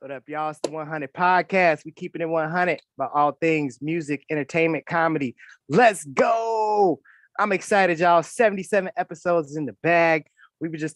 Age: 20-39